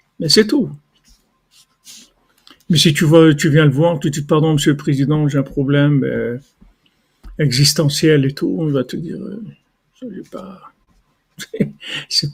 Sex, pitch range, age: male, 145-180 Hz, 50-69